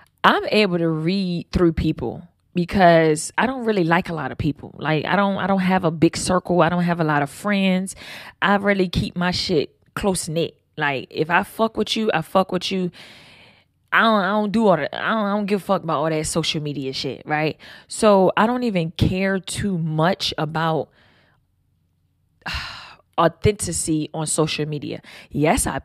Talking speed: 195 wpm